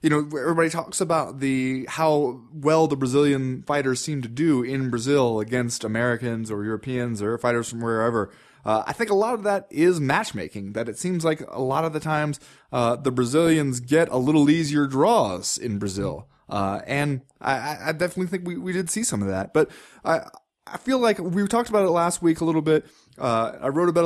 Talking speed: 205 wpm